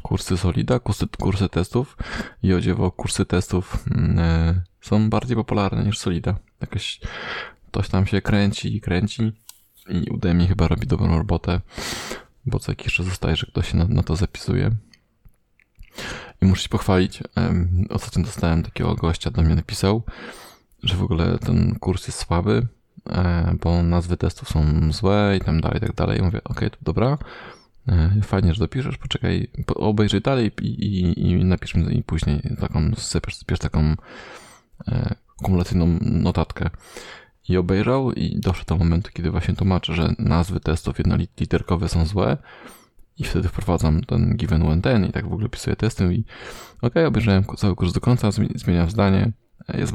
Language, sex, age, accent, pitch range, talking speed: Polish, male, 20-39, native, 85-110 Hz, 160 wpm